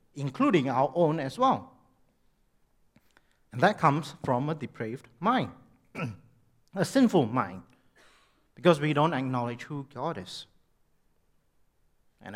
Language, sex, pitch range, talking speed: English, male, 115-165 Hz, 110 wpm